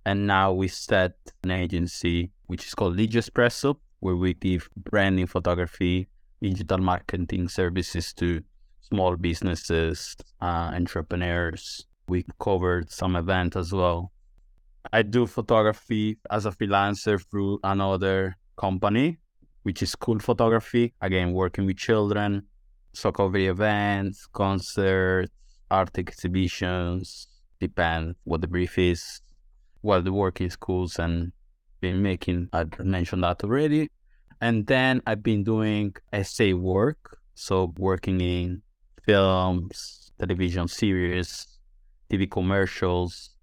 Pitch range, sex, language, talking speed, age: 90-100 Hz, male, English, 115 wpm, 20-39